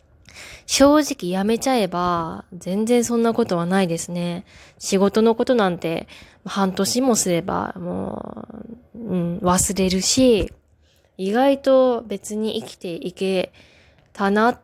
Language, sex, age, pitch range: Japanese, female, 20-39, 175-230 Hz